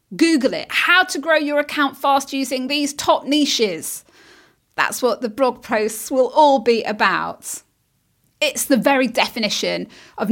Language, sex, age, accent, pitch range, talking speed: English, female, 30-49, British, 230-305 Hz, 150 wpm